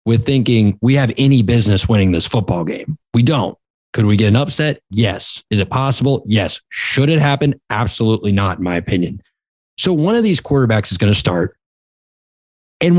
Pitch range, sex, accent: 110-155 Hz, male, American